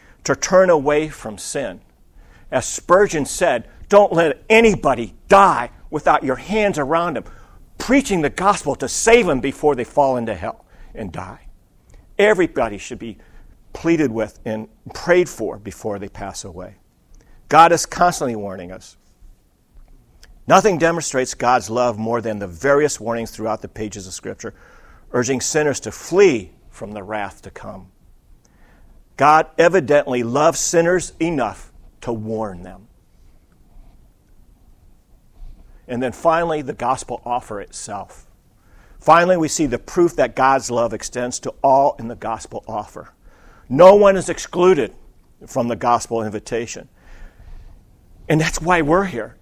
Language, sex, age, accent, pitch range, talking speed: English, male, 50-69, American, 110-165 Hz, 135 wpm